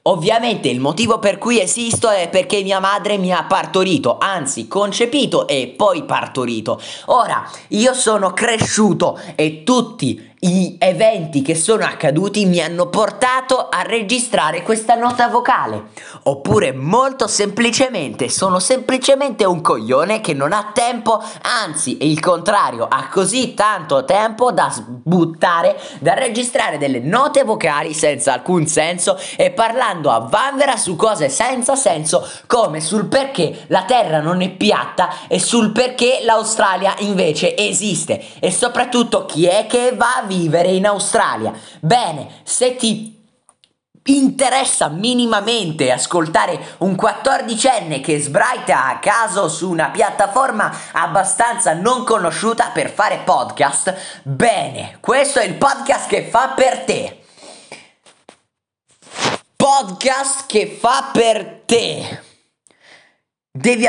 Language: Italian